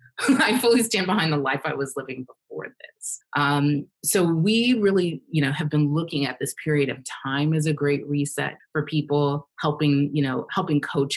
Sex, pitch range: female, 135-185 Hz